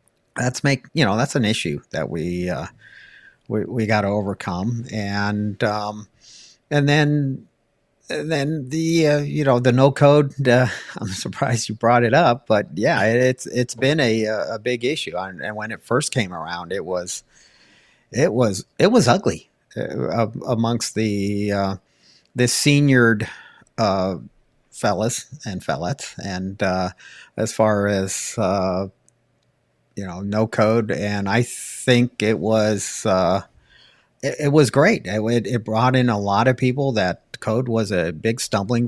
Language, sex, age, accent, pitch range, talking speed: English, male, 50-69, American, 100-125 Hz, 160 wpm